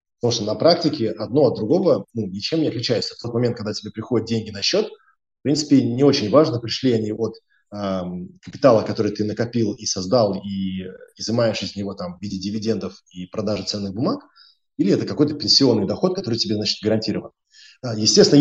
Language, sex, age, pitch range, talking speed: Russian, male, 20-39, 105-130 Hz, 180 wpm